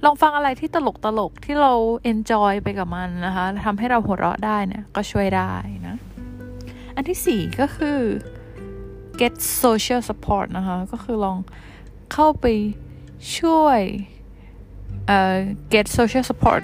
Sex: female